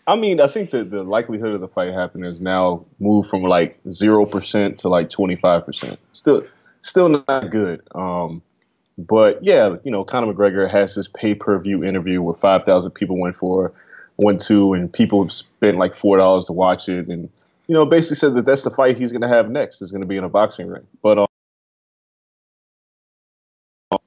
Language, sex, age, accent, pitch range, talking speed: English, male, 20-39, American, 95-150 Hz, 185 wpm